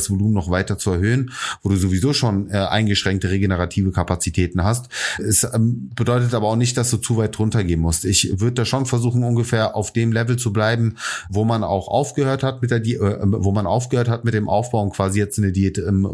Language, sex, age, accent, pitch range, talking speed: German, male, 30-49, German, 100-125 Hz, 225 wpm